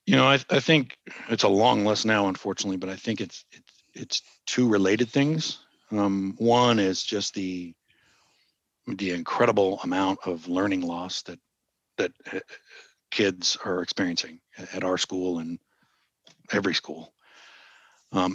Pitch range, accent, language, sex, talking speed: 95-115 Hz, American, English, male, 140 wpm